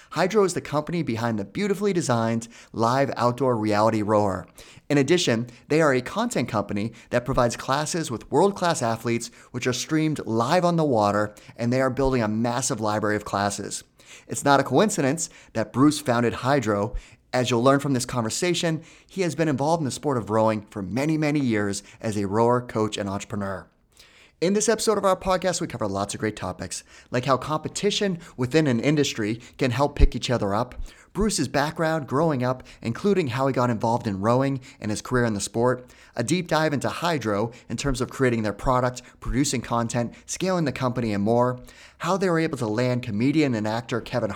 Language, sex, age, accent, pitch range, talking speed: English, male, 30-49, American, 110-155 Hz, 195 wpm